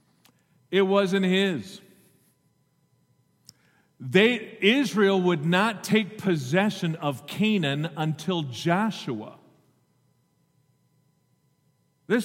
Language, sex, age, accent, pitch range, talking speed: English, male, 50-69, American, 165-225 Hz, 70 wpm